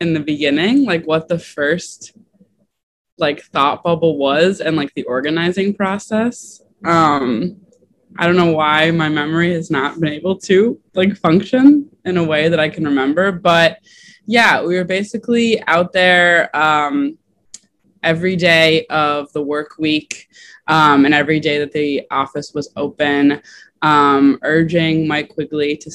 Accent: American